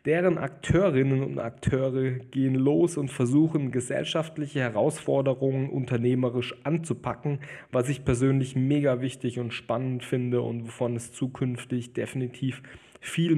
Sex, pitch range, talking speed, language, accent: male, 125-145 Hz, 115 wpm, German, German